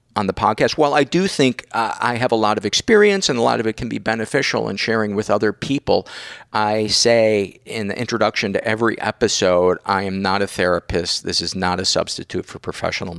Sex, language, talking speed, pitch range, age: male, English, 215 wpm, 100-135 Hz, 50-69